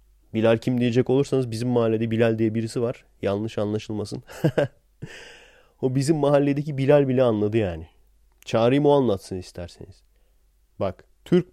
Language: Turkish